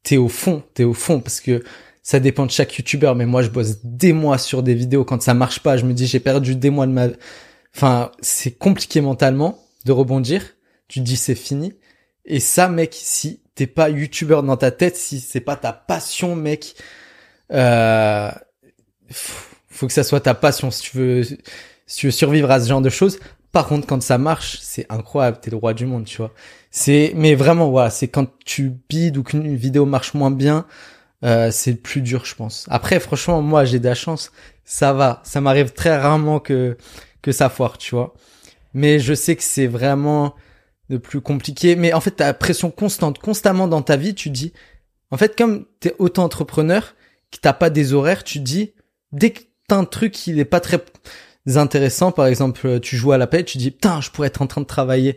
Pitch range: 130-160 Hz